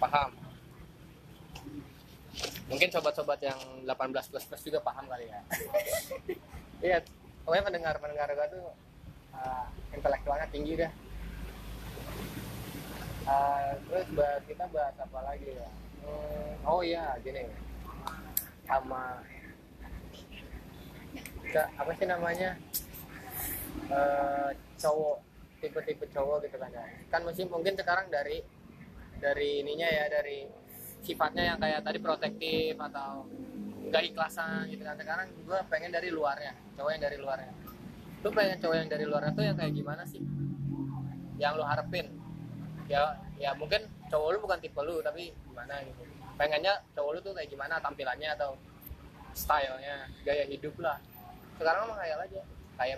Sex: male